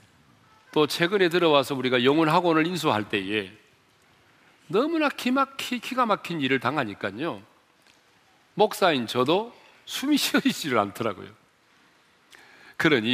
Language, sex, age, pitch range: Korean, male, 40-59, 115-185 Hz